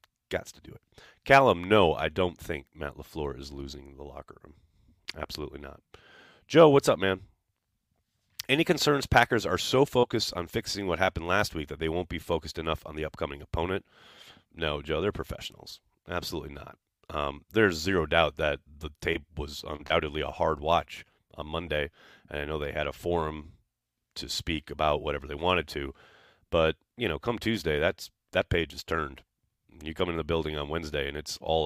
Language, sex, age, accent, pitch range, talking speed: English, male, 30-49, American, 75-110 Hz, 185 wpm